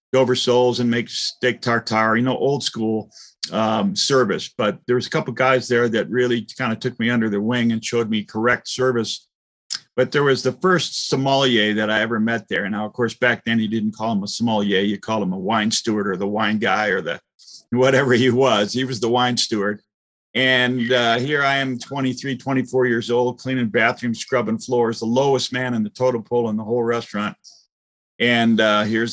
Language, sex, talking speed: English, male, 210 wpm